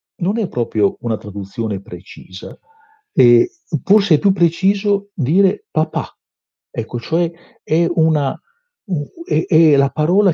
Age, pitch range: 50-69, 105-165 Hz